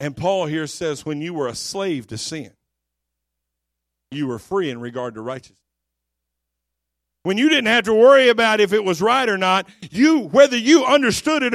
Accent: American